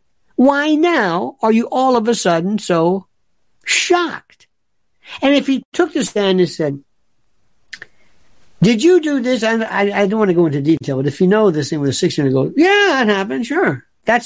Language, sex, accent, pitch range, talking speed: English, male, American, 160-230 Hz, 200 wpm